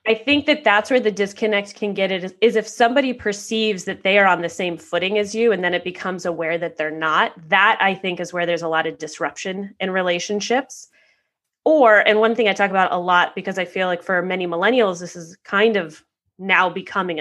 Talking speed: 225 wpm